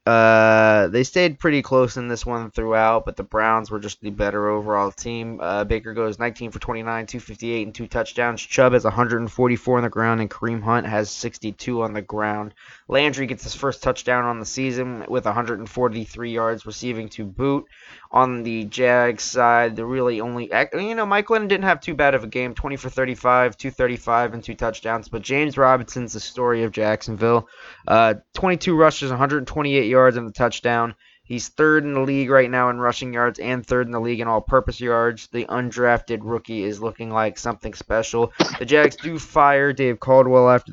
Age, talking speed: 20-39, 190 wpm